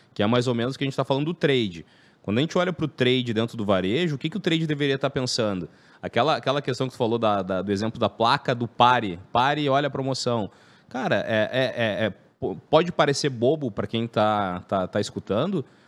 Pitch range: 110-155 Hz